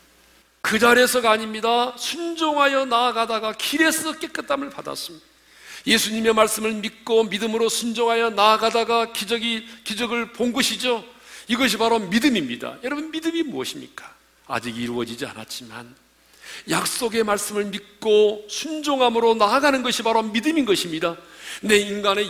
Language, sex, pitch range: Korean, male, 205-275 Hz